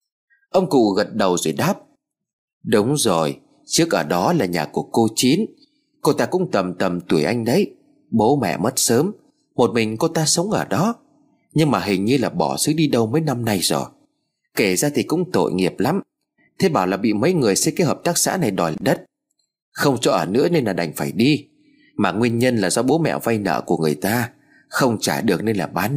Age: 30-49